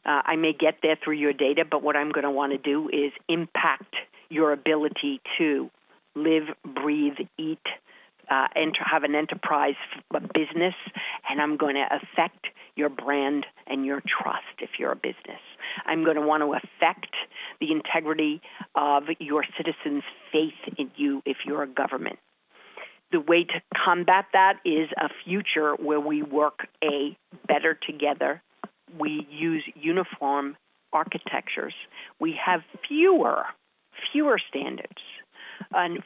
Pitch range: 145-175 Hz